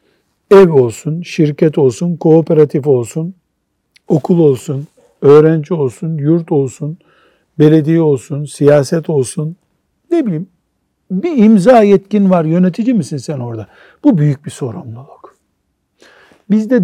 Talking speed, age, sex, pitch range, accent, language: 110 wpm, 60-79, male, 145-195 Hz, native, Turkish